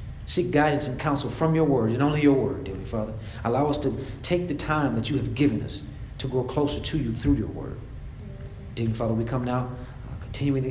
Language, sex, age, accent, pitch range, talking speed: English, male, 40-59, American, 110-135 Hz, 220 wpm